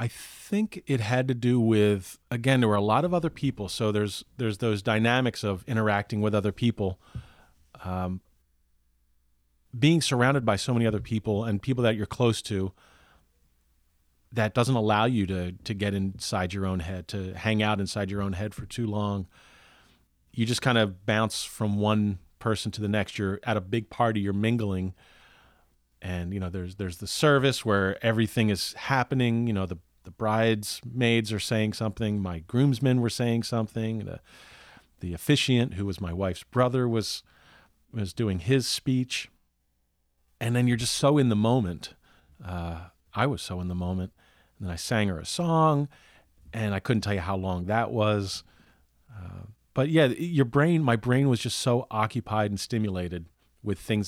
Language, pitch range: English, 90-120 Hz